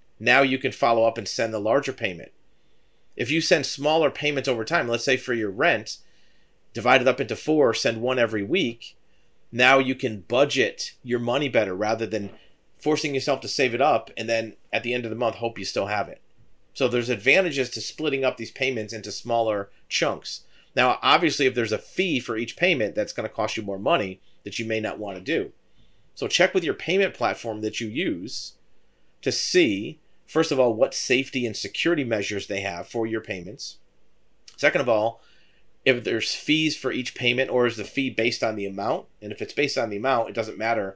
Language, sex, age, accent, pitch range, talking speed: English, male, 40-59, American, 110-135 Hz, 210 wpm